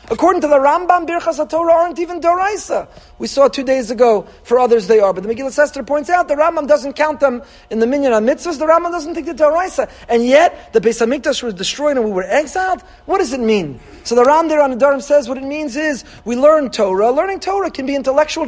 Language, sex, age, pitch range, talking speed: English, male, 40-59, 230-300 Hz, 235 wpm